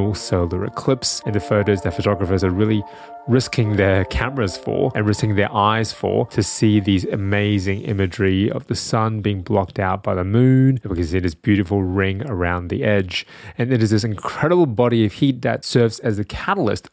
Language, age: English, 20-39